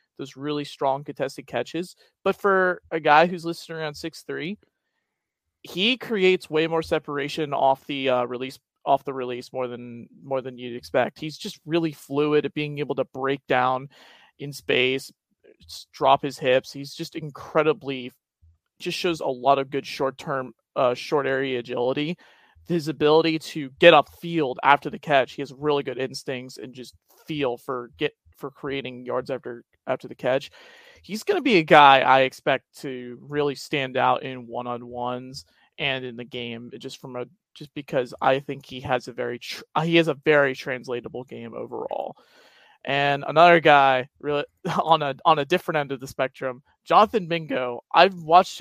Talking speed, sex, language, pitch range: 175 wpm, male, English, 130-165 Hz